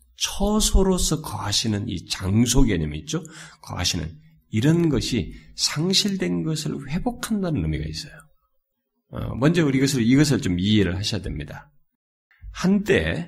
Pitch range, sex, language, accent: 100-155 Hz, male, Korean, native